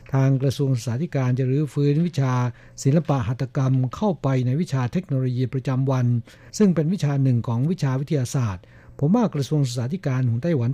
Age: 60-79